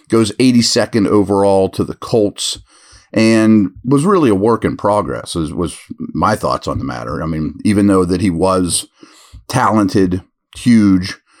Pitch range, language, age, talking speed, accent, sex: 95-130 Hz, English, 40-59, 155 wpm, American, male